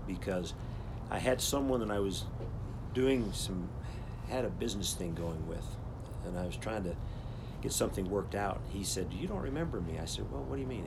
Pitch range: 100-120 Hz